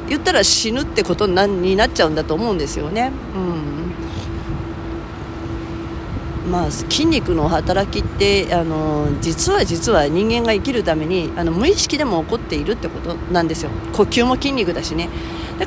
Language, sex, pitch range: Japanese, female, 165-240 Hz